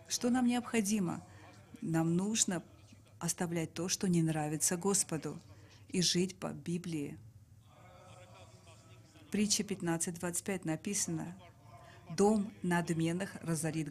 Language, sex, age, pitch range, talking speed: English, female, 40-59, 145-185 Hz, 90 wpm